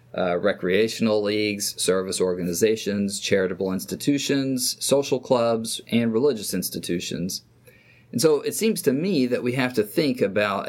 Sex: male